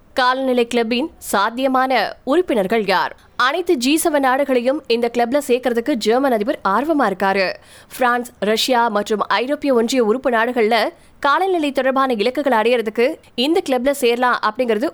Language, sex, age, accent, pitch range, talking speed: Tamil, female, 20-39, native, 230-280 Hz, 75 wpm